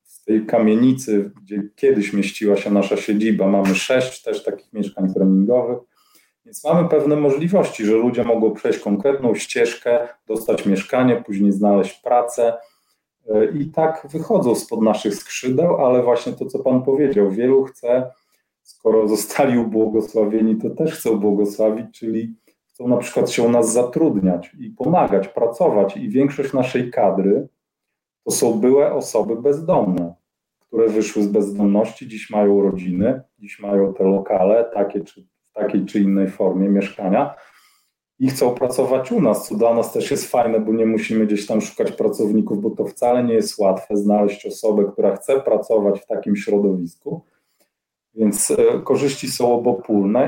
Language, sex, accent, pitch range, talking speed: Polish, male, native, 100-130 Hz, 150 wpm